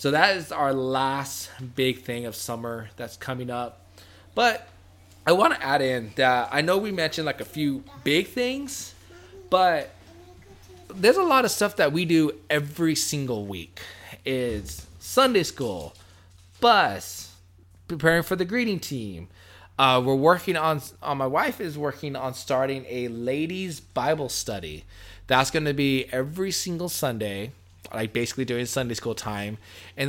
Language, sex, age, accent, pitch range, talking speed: English, male, 20-39, American, 105-150 Hz, 155 wpm